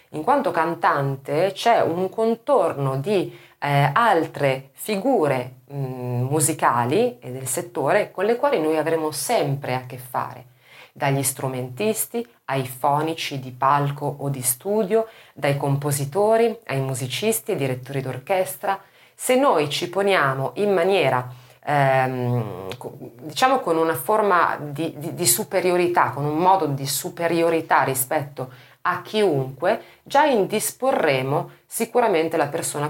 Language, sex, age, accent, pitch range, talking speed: Italian, female, 30-49, native, 135-200 Hz, 125 wpm